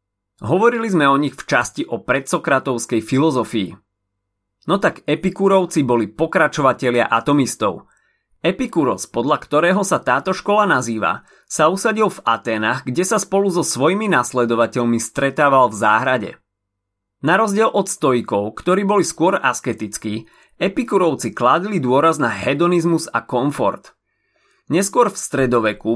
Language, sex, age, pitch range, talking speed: Slovak, male, 30-49, 115-180 Hz, 125 wpm